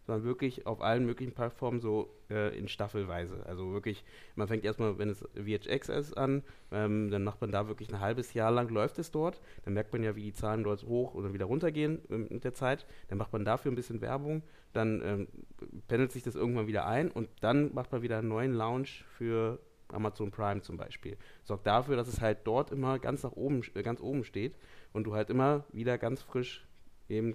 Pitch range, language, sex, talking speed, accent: 105-125 Hz, German, male, 215 wpm, German